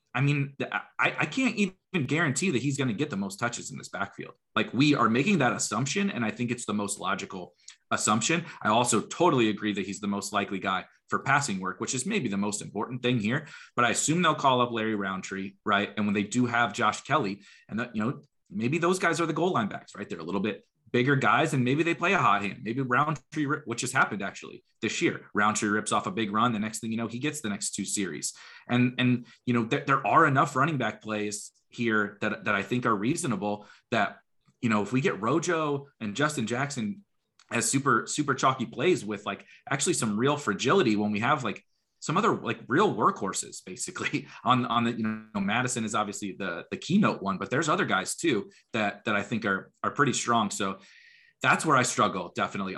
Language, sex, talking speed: English, male, 230 wpm